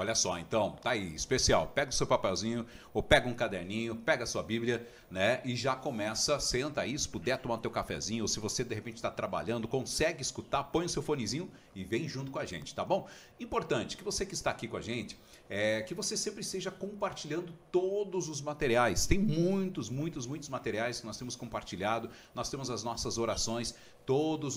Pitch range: 115-165 Hz